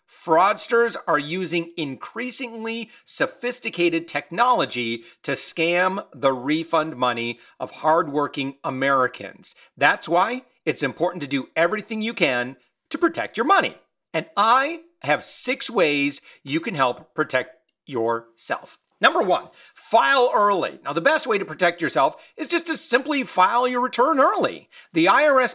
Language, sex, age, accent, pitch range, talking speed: English, male, 40-59, American, 155-245 Hz, 135 wpm